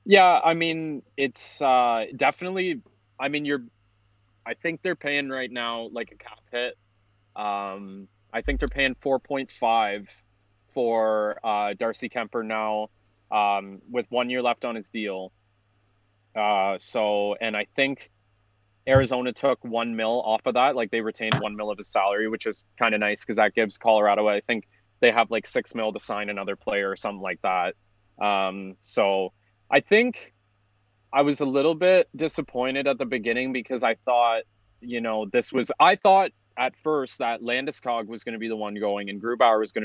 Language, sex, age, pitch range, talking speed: English, male, 20-39, 105-125 Hz, 180 wpm